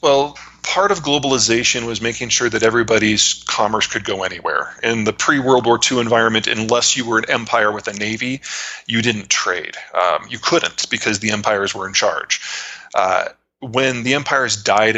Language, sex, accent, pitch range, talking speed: English, male, American, 105-125 Hz, 175 wpm